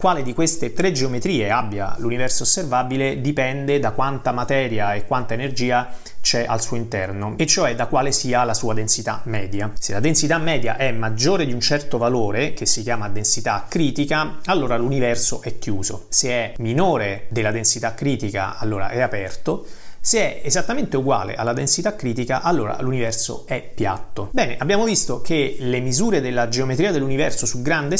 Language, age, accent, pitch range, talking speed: Italian, 30-49, native, 115-155 Hz, 165 wpm